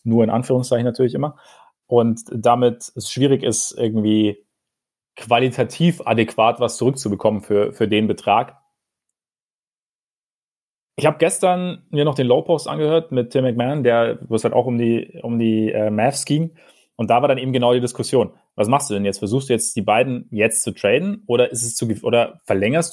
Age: 30-49